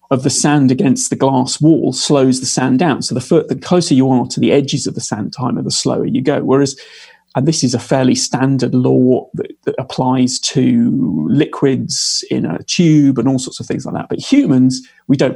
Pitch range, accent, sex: 130-165 Hz, British, male